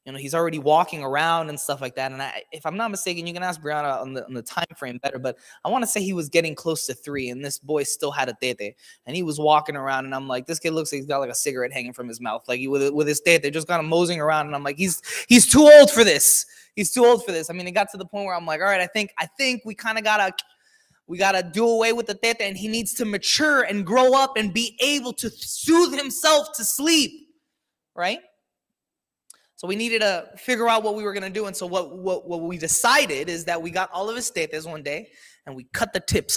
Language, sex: English, male